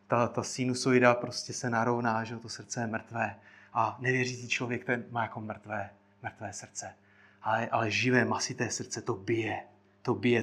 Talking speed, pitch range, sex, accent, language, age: 165 wpm, 115-155 Hz, male, native, Czech, 30-49